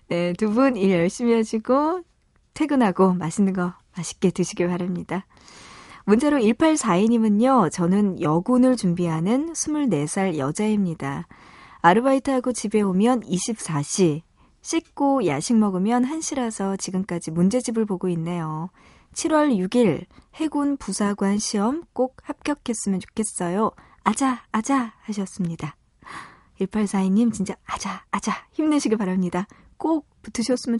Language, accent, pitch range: Korean, native, 180-250 Hz